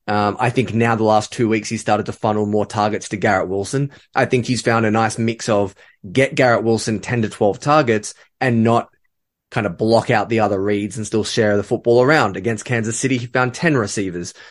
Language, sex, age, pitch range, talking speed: English, male, 20-39, 105-125 Hz, 225 wpm